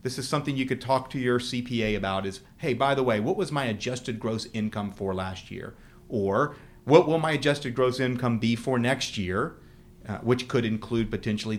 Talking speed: 205 wpm